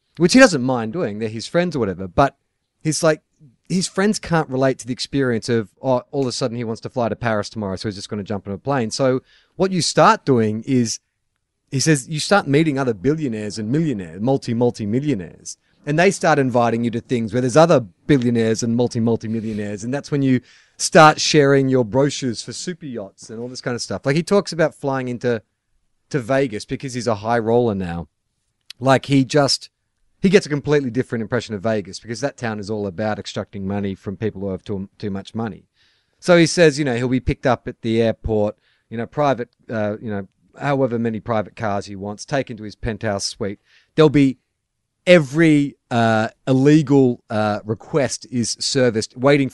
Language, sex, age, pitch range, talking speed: English, male, 30-49, 110-140 Hz, 205 wpm